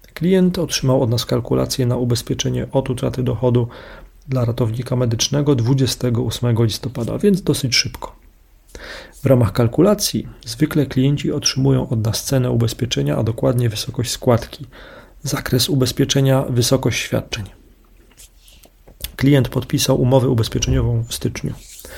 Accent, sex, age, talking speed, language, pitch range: native, male, 40-59, 115 wpm, Polish, 120-135 Hz